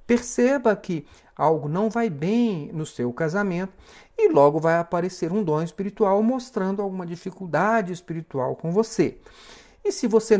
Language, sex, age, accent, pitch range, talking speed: Portuguese, male, 50-69, Brazilian, 150-210 Hz, 145 wpm